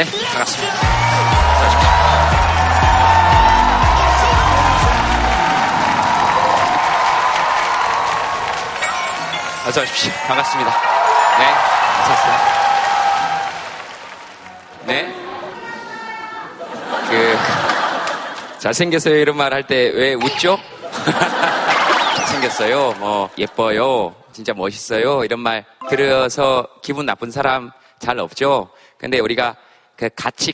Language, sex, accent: Korean, male, native